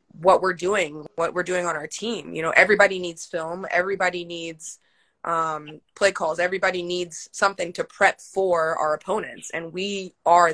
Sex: female